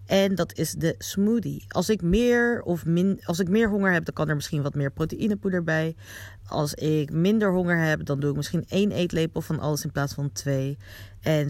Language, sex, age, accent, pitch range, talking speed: Dutch, female, 40-59, Dutch, 145-195 Hz, 215 wpm